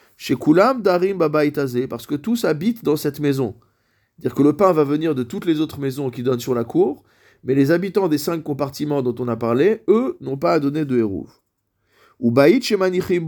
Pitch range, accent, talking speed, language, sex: 120-160 Hz, French, 195 wpm, French, male